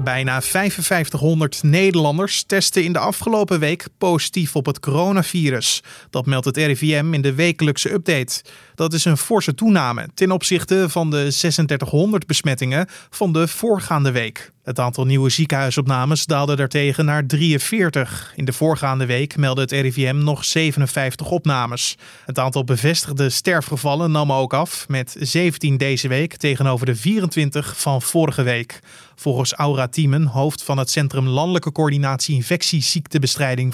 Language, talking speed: Dutch, 140 wpm